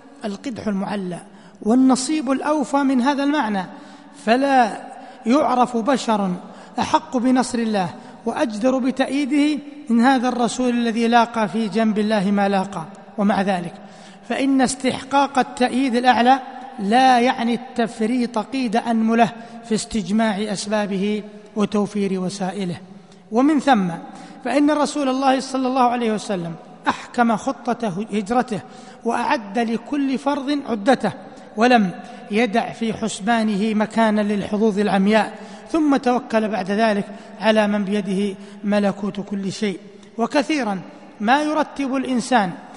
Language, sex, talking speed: Arabic, male, 110 wpm